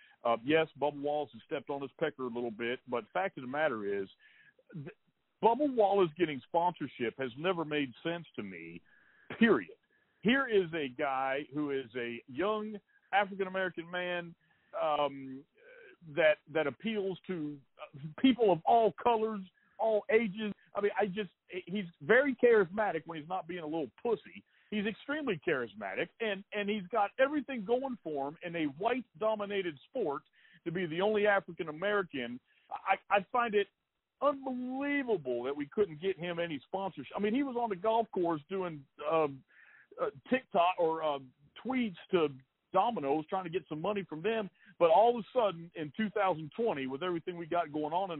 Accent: American